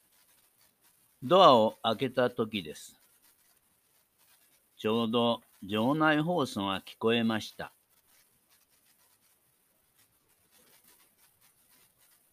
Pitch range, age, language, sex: 110-135 Hz, 60-79, Japanese, male